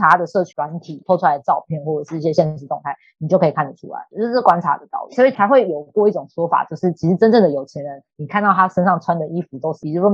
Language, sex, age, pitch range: Chinese, female, 20-39, 150-190 Hz